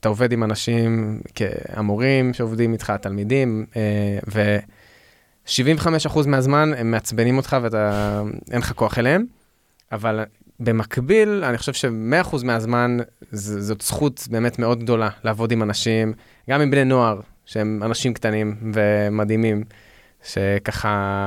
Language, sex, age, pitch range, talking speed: Hebrew, male, 20-39, 110-130 Hz, 120 wpm